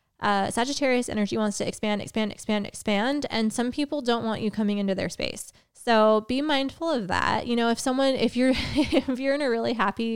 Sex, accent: female, American